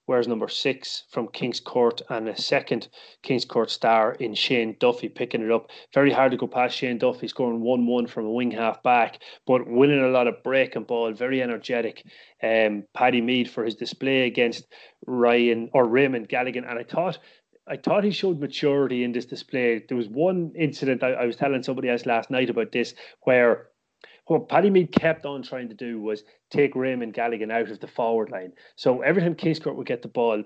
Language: English